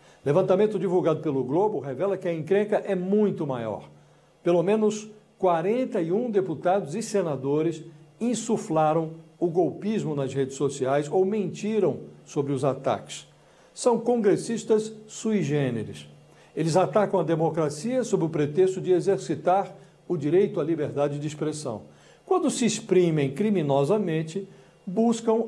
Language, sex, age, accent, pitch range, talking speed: English, male, 60-79, Brazilian, 150-200 Hz, 120 wpm